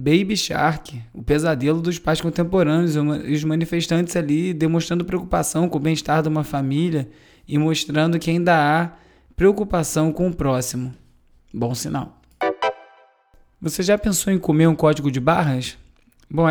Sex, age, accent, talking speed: male, 20-39, Brazilian, 145 wpm